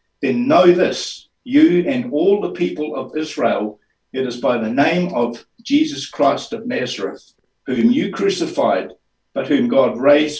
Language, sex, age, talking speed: English, male, 60-79, 155 wpm